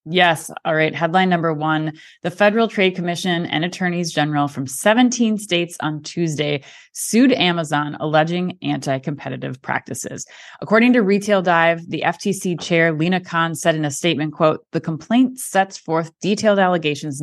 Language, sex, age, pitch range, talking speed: English, female, 20-39, 150-195 Hz, 150 wpm